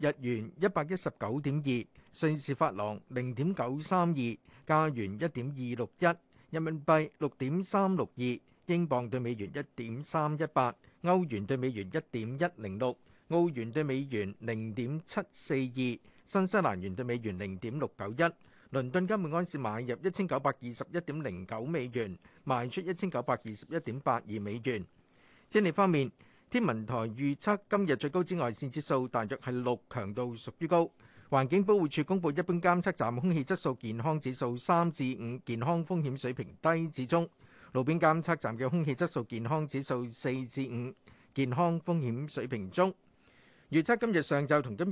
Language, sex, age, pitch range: Chinese, male, 50-69, 120-170 Hz